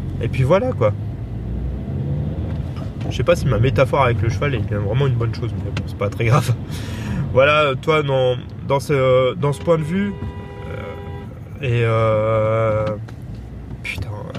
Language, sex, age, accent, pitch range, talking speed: French, male, 20-39, French, 110-130 Hz, 155 wpm